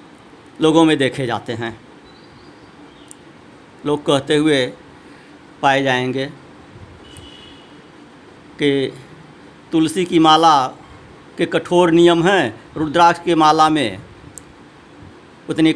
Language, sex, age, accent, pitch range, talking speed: Hindi, male, 60-79, native, 130-170 Hz, 90 wpm